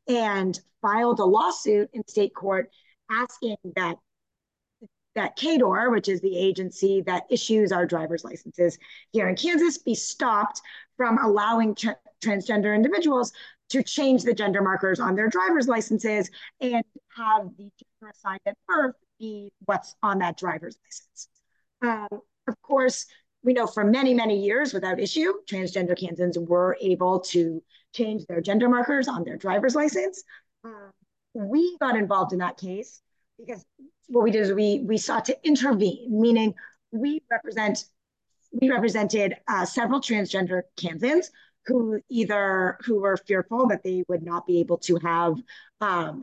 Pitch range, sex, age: 185-245 Hz, female, 30-49